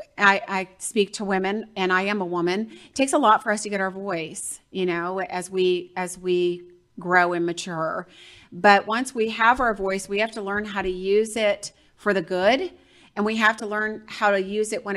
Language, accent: English, American